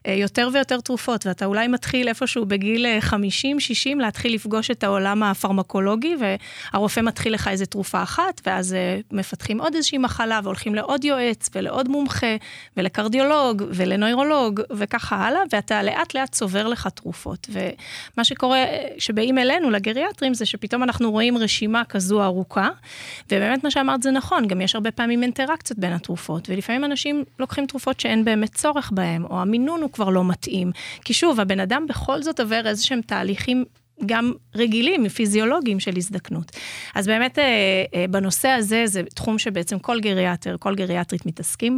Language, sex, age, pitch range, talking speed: Hebrew, female, 30-49, 195-255 Hz, 130 wpm